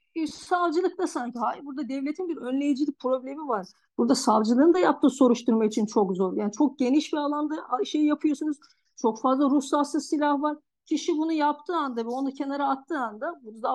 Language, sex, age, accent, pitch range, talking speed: Turkish, female, 50-69, native, 250-320 Hz, 175 wpm